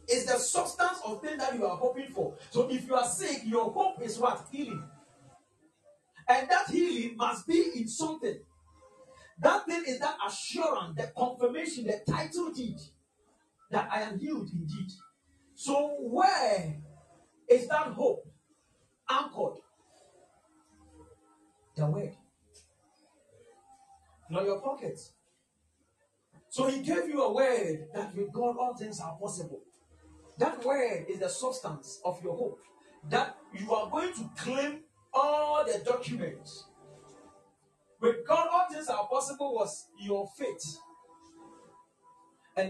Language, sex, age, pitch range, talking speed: English, male, 40-59, 205-320 Hz, 130 wpm